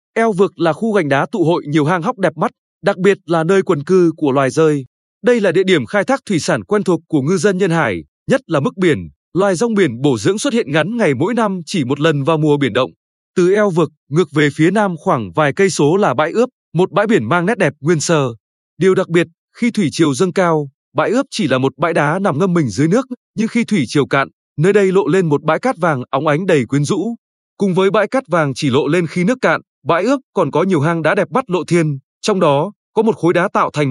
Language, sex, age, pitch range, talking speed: Vietnamese, male, 20-39, 150-200 Hz, 265 wpm